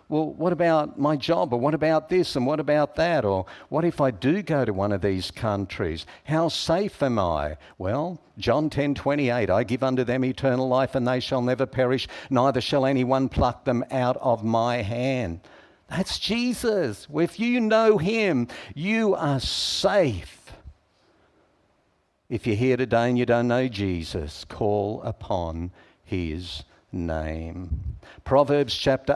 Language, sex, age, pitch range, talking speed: English, male, 60-79, 100-145 Hz, 155 wpm